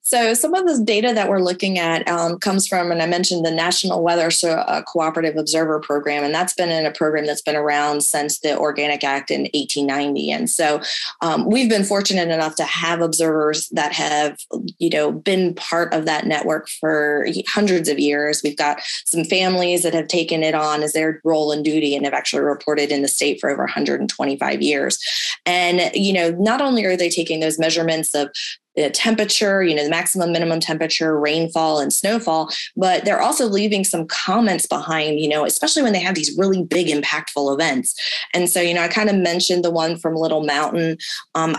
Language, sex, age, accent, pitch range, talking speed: English, female, 20-39, American, 150-180 Hz, 200 wpm